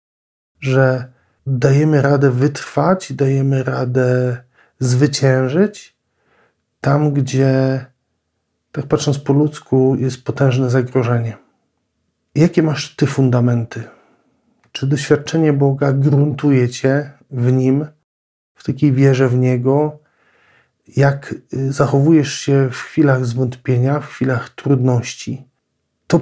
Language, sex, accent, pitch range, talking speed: Polish, male, native, 130-145 Hz, 95 wpm